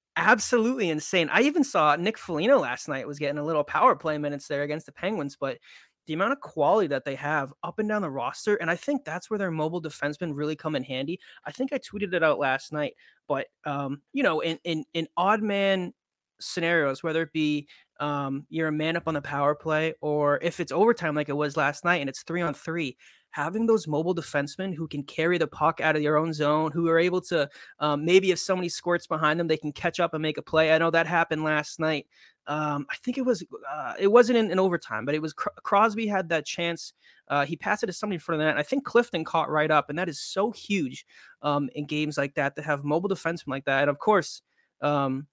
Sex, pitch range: male, 145-175 Hz